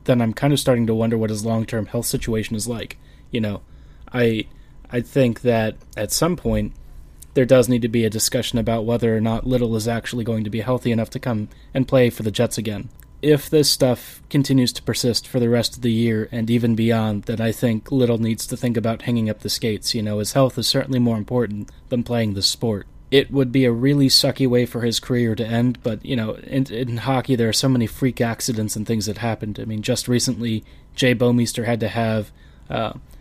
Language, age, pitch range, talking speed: English, 20-39, 110-125 Hz, 230 wpm